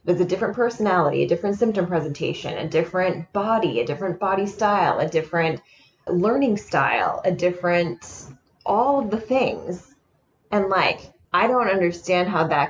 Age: 20-39